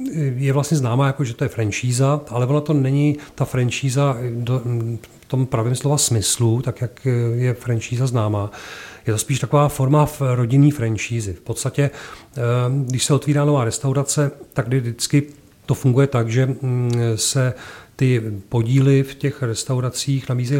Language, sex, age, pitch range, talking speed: Czech, male, 40-59, 115-140 Hz, 150 wpm